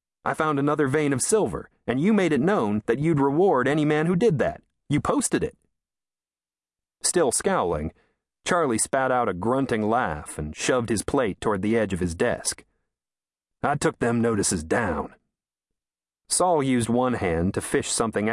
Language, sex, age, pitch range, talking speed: English, male, 40-59, 90-150 Hz, 170 wpm